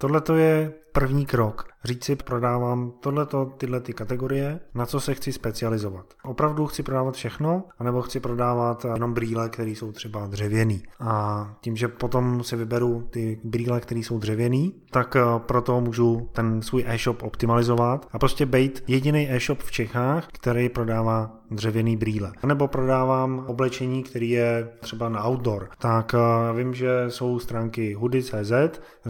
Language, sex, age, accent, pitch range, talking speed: Czech, male, 20-39, native, 115-130 Hz, 150 wpm